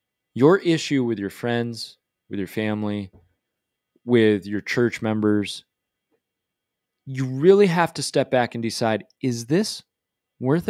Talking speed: 130 wpm